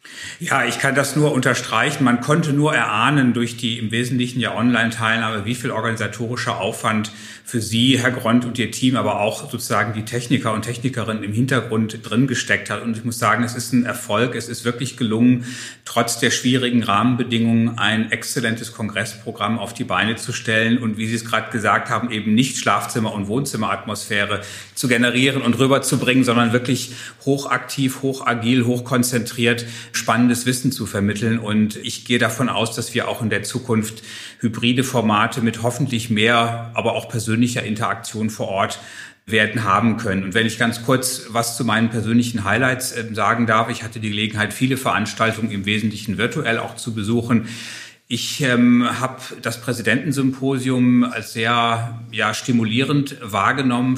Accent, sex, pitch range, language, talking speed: German, male, 110-125 Hz, German, 165 wpm